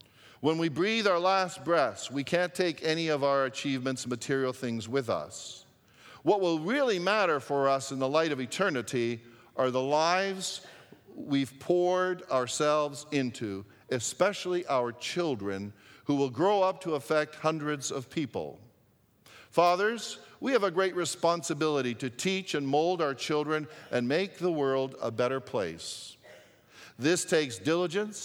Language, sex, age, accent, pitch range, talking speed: English, male, 50-69, American, 125-170 Hz, 145 wpm